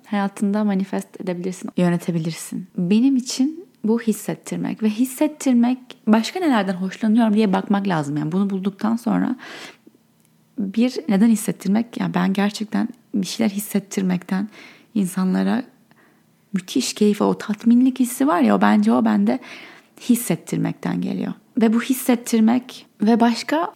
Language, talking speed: Turkish, 120 wpm